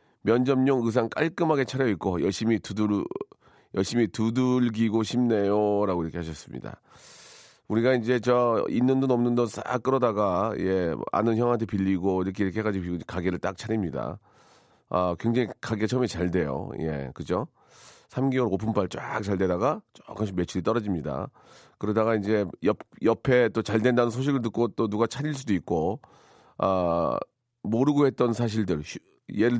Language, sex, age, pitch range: Korean, male, 40-59, 100-130 Hz